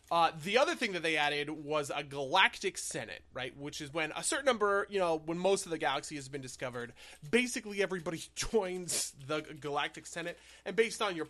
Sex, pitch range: male, 140-180 Hz